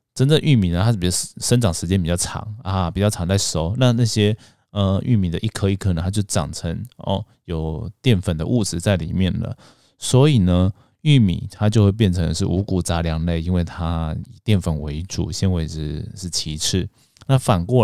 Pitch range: 85-115 Hz